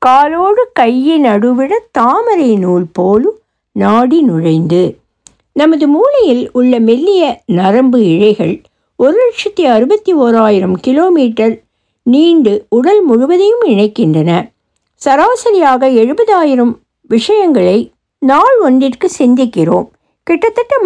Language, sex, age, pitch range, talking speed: Tamil, female, 60-79, 215-355 Hz, 85 wpm